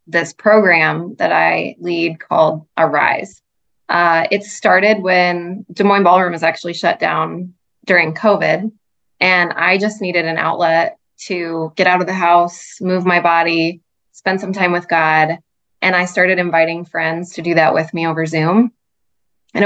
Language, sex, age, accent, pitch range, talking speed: English, female, 20-39, American, 165-190 Hz, 160 wpm